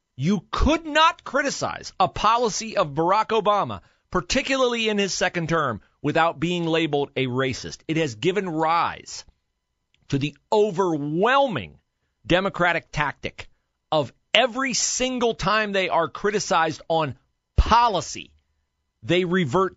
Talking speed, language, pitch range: 120 wpm, English, 130-200 Hz